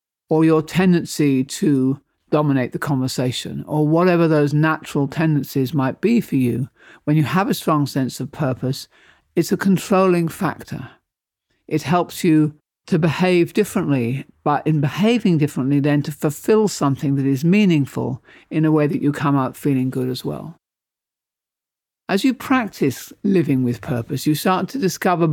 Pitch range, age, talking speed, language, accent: 135-175 Hz, 50-69, 155 wpm, English, British